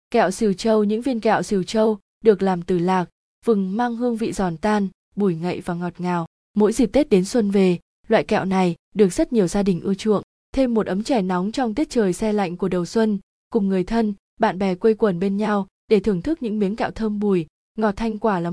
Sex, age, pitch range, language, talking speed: female, 20-39, 185-225 Hz, Vietnamese, 235 wpm